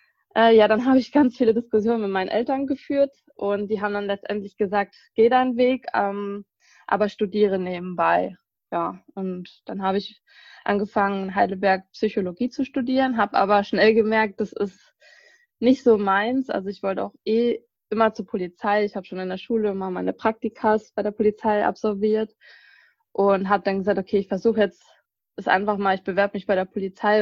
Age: 20-39